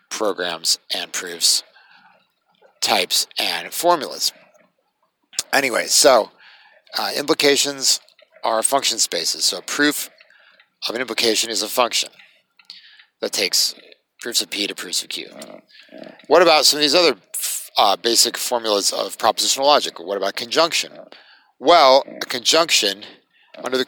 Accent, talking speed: American, 130 wpm